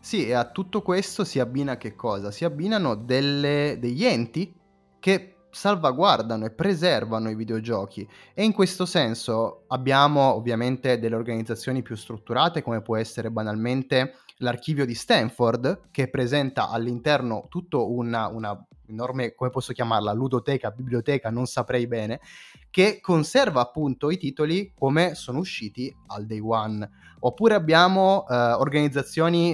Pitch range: 120-160 Hz